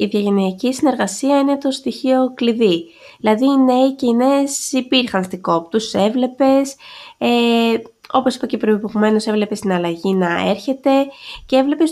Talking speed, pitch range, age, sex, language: 140 wpm, 210-270 Hz, 20-39, female, Greek